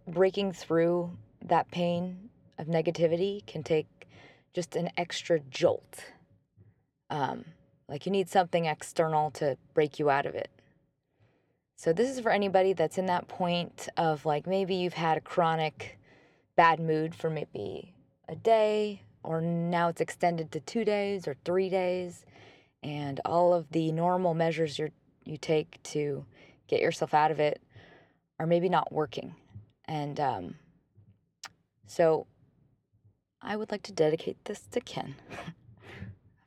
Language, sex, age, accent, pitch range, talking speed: English, female, 20-39, American, 150-185 Hz, 140 wpm